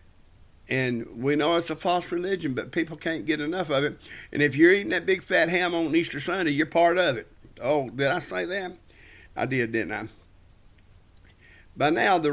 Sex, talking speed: male, 200 wpm